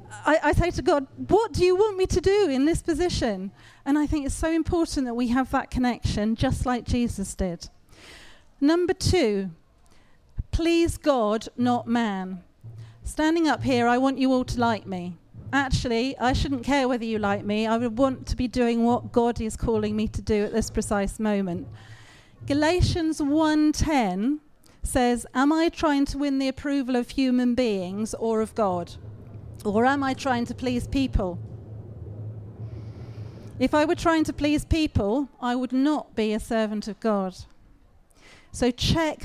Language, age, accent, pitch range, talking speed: English, 40-59, British, 205-280 Hz, 170 wpm